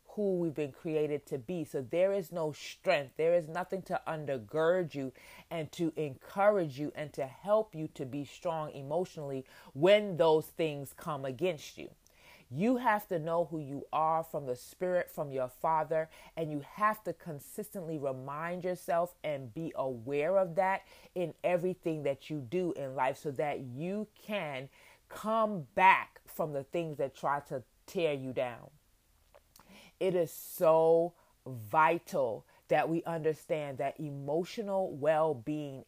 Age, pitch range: 30-49, 140-180 Hz